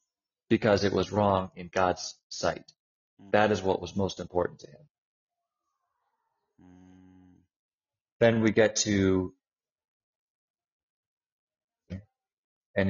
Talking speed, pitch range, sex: 95 wpm, 95-115 Hz, male